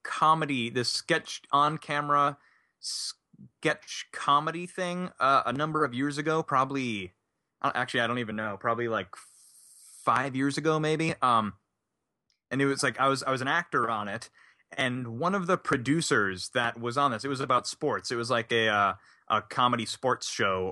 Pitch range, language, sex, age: 115-145 Hz, English, male, 20-39